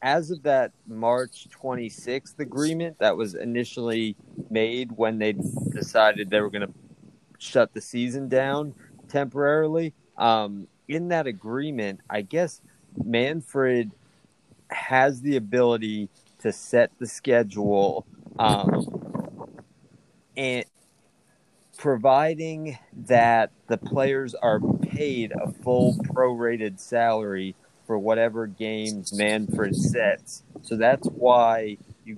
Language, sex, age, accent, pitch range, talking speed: English, male, 30-49, American, 110-135 Hz, 105 wpm